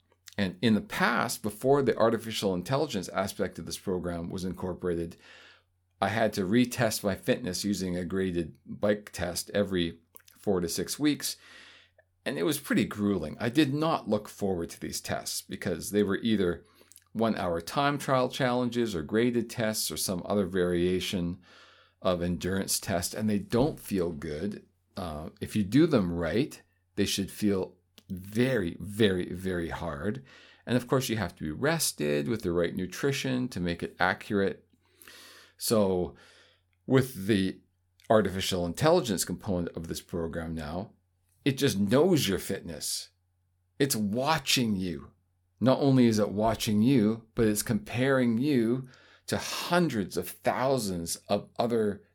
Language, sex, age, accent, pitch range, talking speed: English, male, 50-69, American, 90-115 Hz, 150 wpm